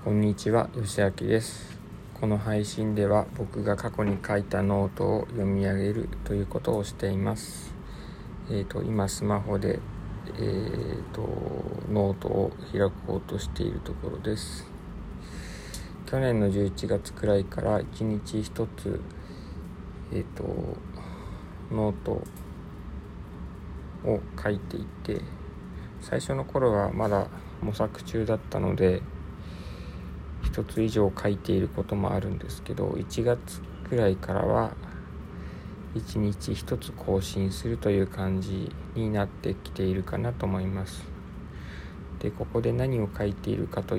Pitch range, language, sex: 90-105 Hz, Japanese, male